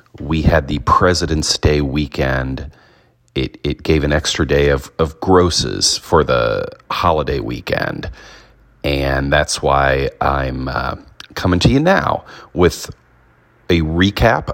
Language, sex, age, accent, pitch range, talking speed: English, male, 30-49, American, 70-90 Hz, 130 wpm